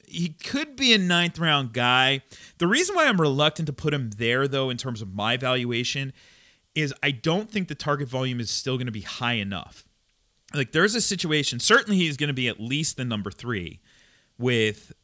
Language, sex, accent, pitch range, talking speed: English, male, American, 105-145 Hz, 205 wpm